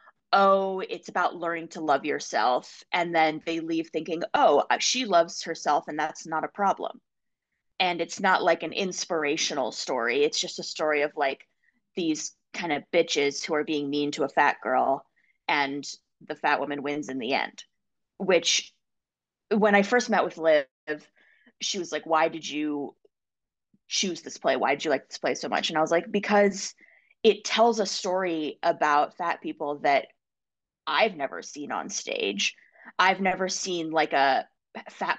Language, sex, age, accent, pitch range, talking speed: English, female, 20-39, American, 155-200 Hz, 175 wpm